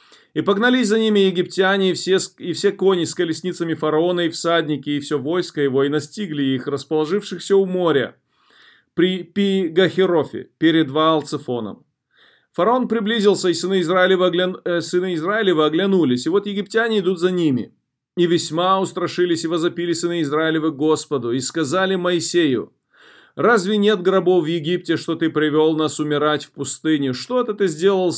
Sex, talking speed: male, 150 wpm